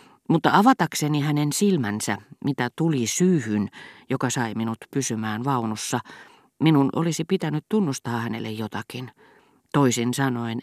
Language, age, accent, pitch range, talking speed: Finnish, 40-59, native, 120-155 Hz, 115 wpm